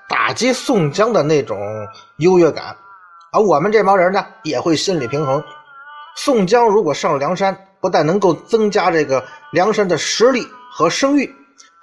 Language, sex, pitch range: Chinese, male, 155-255 Hz